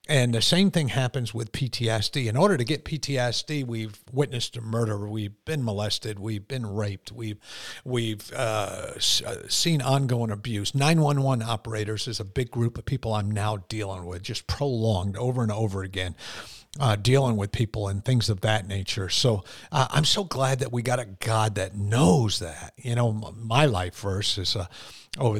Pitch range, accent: 110-135 Hz, American